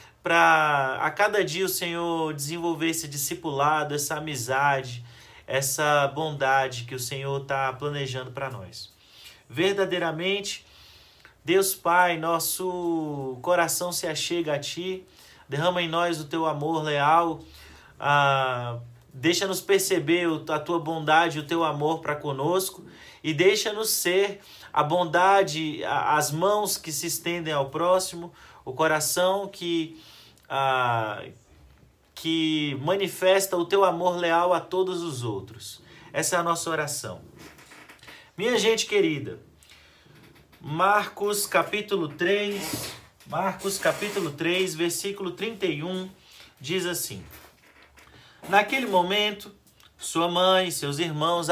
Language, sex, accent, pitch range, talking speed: Portuguese, male, Brazilian, 145-185 Hz, 115 wpm